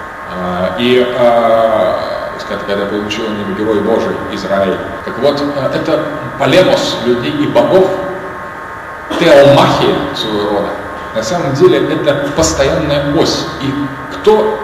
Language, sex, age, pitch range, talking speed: English, male, 40-59, 125-195 Hz, 120 wpm